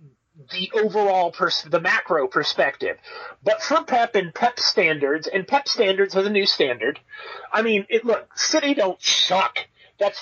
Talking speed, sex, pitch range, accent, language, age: 160 wpm, male, 175-265 Hz, American, English, 30-49